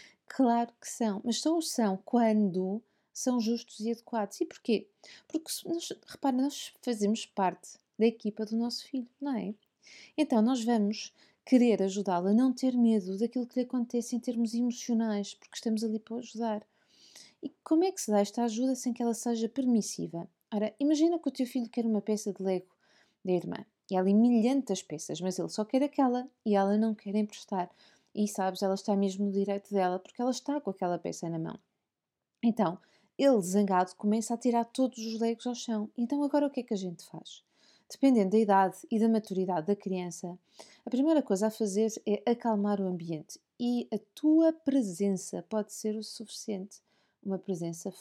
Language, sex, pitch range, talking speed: Portuguese, female, 200-245 Hz, 190 wpm